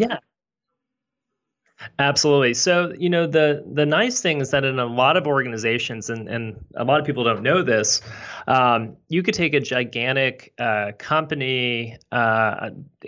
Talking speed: 155 wpm